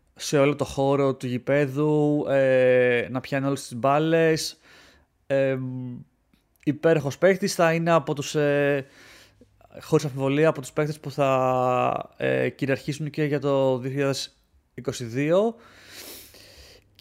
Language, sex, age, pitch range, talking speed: Greek, male, 30-49, 125-155 Hz, 100 wpm